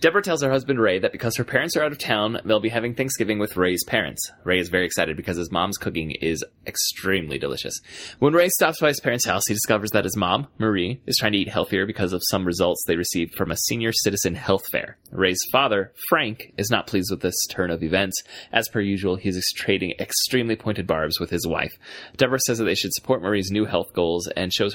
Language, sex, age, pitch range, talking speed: English, male, 20-39, 90-120 Hz, 230 wpm